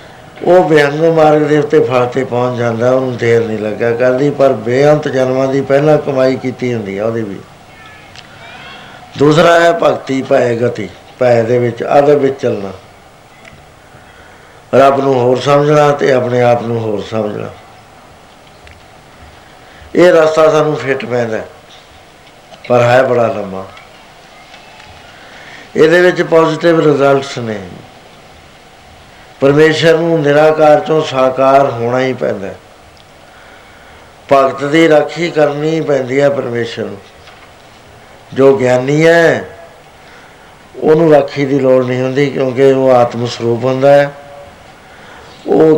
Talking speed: 125 wpm